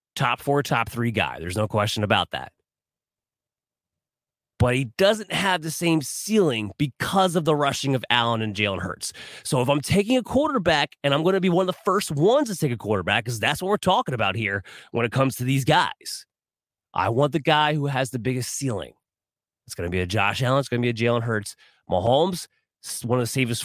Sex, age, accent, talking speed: male, 30-49, American, 220 wpm